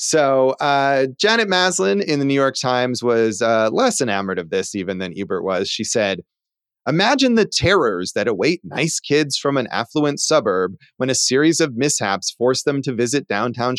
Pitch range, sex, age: 120-170 Hz, male, 30-49